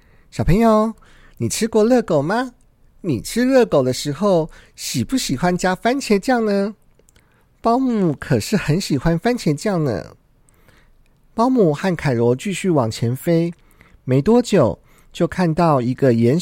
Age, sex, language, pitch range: 50-69, male, Chinese, 155-225 Hz